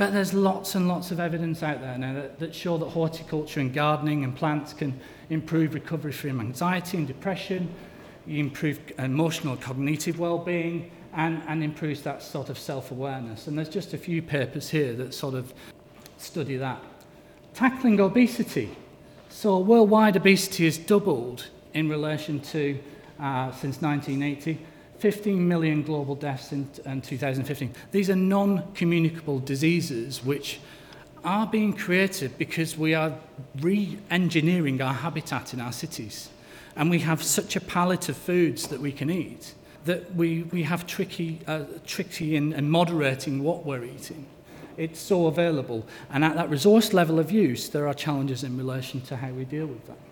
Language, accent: English, British